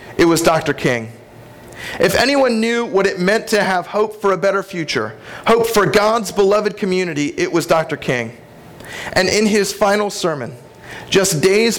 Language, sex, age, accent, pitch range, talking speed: English, male, 40-59, American, 160-205 Hz, 170 wpm